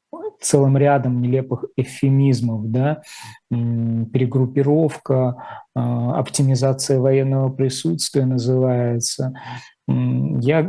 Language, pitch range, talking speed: Russian, 125-145 Hz, 60 wpm